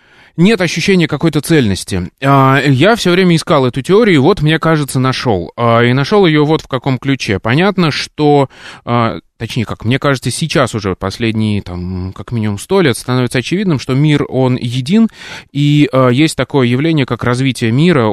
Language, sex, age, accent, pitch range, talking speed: Russian, male, 20-39, native, 115-150 Hz, 165 wpm